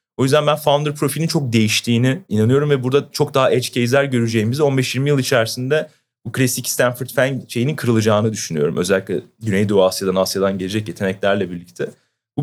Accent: native